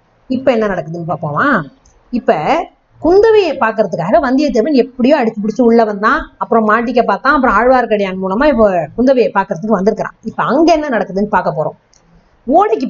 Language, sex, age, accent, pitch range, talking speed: Tamil, female, 30-49, native, 215-285 Hz, 140 wpm